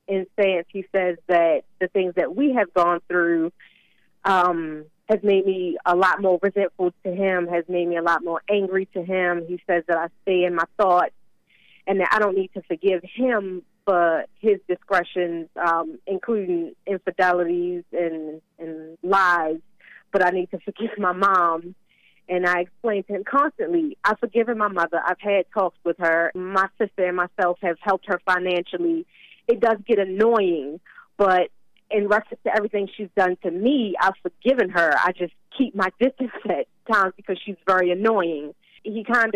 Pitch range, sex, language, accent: 175-205 Hz, female, English, American